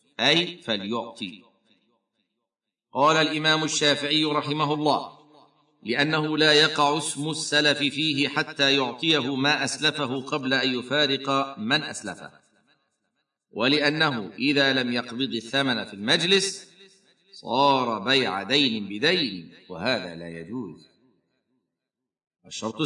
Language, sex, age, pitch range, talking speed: Arabic, male, 50-69, 120-155 Hz, 95 wpm